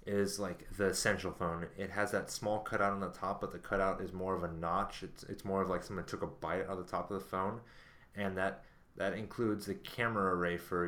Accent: American